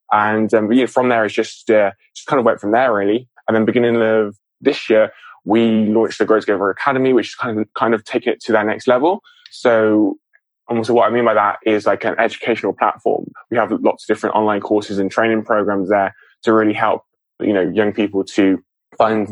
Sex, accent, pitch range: male, British, 105-115 Hz